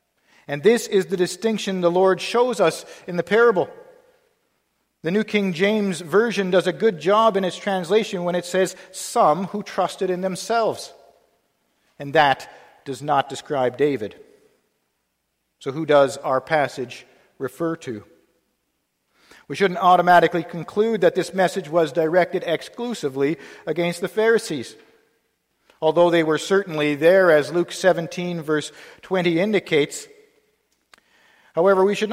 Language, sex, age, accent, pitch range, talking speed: English, male, 50-69, American, 165-200 Hz, 135 wpm